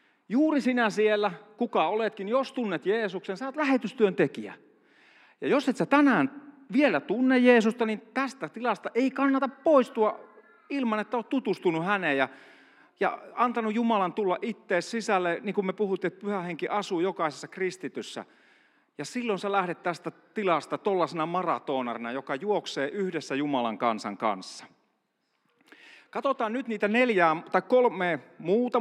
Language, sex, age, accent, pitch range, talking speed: Finnish, male, 40-59, native, 165-235 Hz, 140 wpm